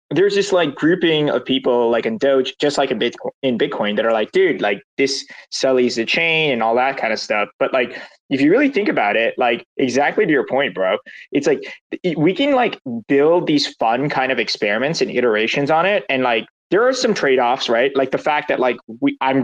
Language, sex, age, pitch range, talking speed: English, male, 20-39, 130-175 Hz, 230 wpm